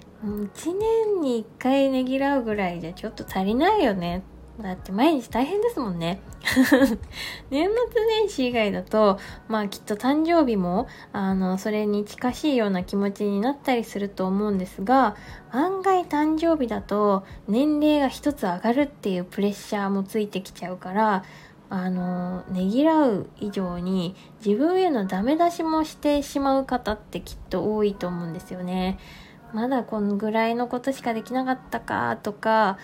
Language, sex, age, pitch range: Japanese, female, 20-39, 190-270 Hz